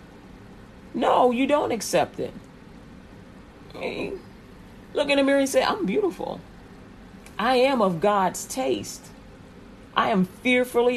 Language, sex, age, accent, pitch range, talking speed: English, female, 40-59, American, 175-240 Hz, 115 wpm